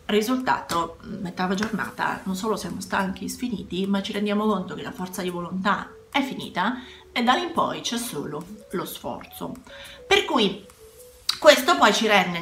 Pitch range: 190-245 Hz